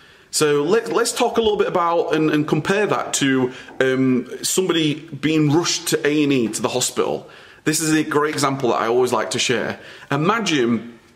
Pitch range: 140-195 Hz